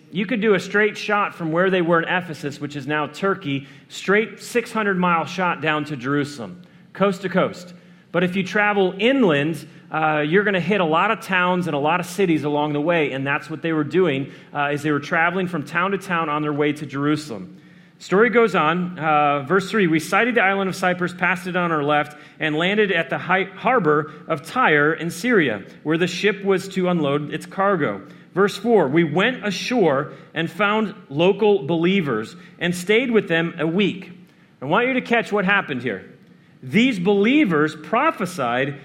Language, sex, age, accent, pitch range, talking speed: English, male, 40-59, American, 155-200 Hz, 195 wpm